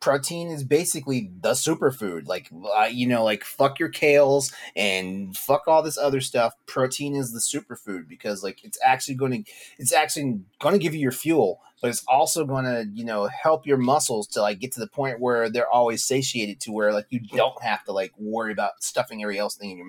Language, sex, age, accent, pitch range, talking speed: English, male, 30-49, American, 115-145 Hz, 215 wpm